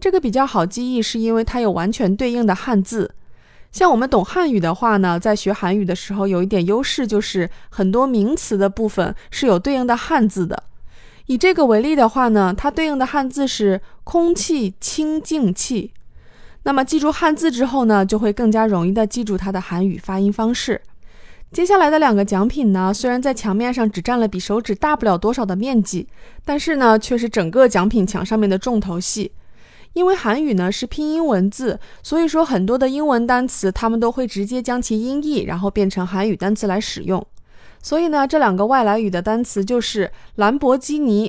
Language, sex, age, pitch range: Chinese, female, 20-39, 200-275 Hz